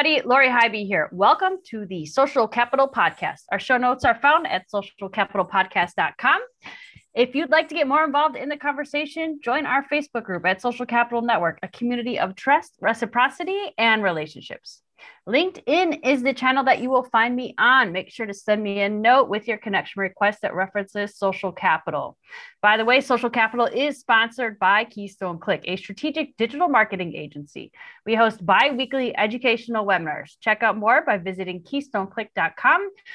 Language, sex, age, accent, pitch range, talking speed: English, female, 30-49, American, 195-275 Hz, 165 wpm